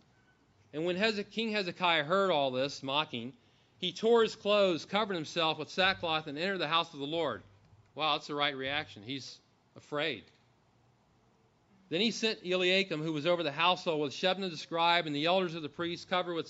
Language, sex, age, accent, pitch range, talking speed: English, male, 40-59, American, 140-180 Hz, 185 wpm